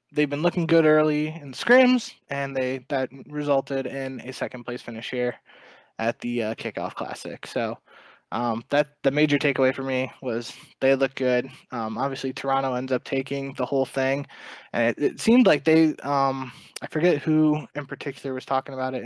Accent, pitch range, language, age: American, 130-145 Hz, English, 20-39